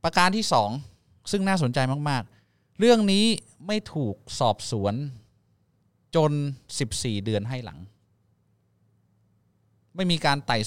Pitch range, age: 110-155 Hz, 20-39